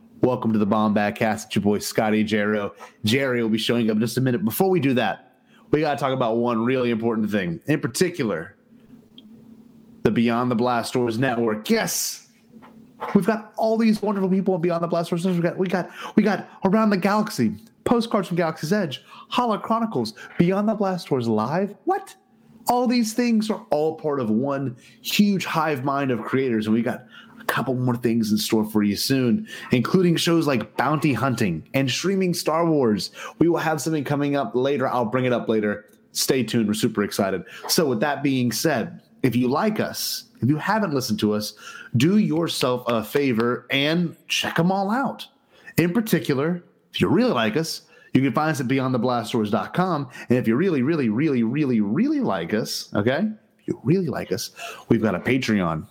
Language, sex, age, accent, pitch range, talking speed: English, male, 30-49, American, 120-195 Hz, 190 wpm